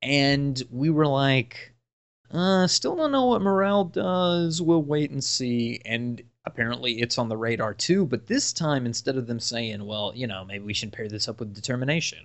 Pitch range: 110-145 Hz